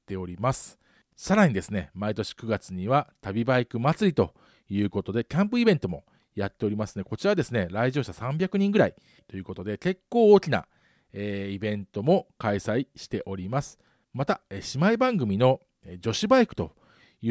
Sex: male